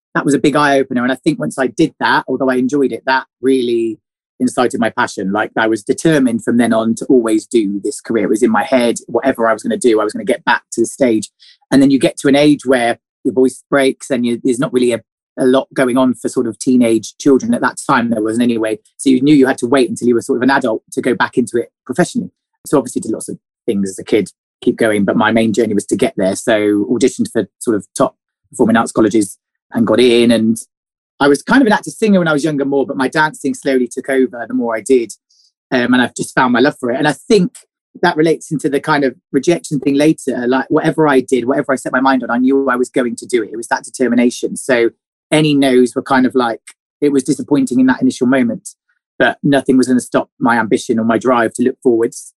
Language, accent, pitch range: English, British, 120-150 Hz